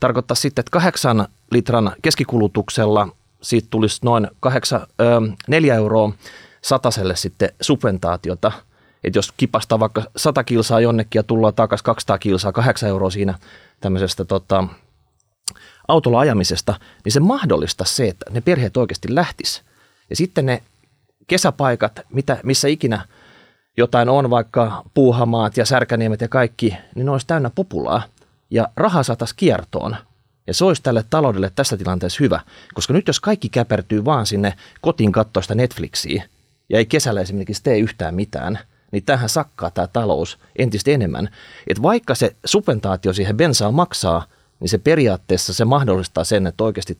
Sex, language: male, Finnish